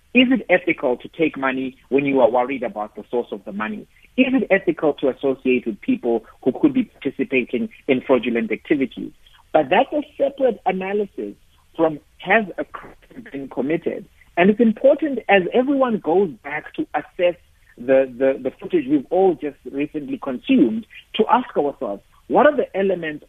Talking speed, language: 170 wpm, English